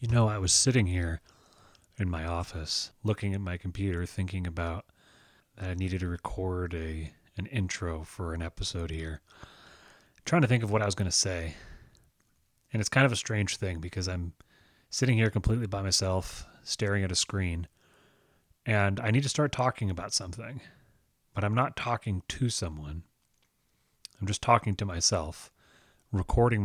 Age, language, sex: 30-49, English, male